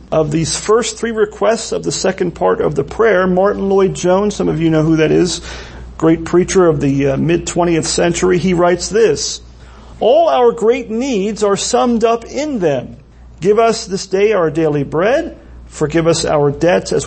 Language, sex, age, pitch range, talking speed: English, male, 40-59, 160-215 Hz, 185 wpm